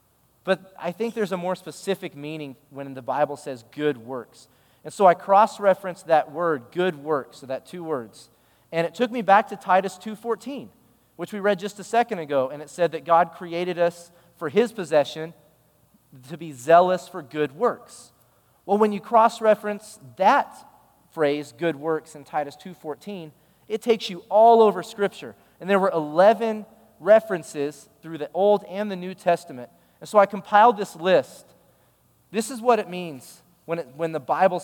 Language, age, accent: English, 30-49, American